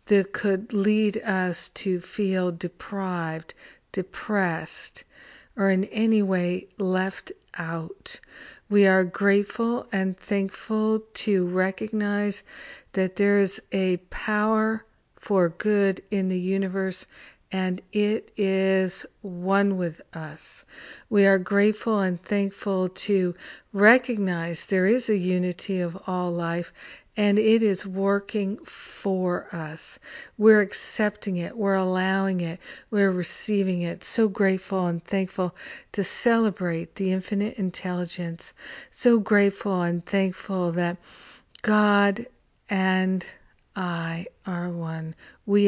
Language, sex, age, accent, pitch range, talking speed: English, female, 50-69, American, 180-205 Hz, 115 wpm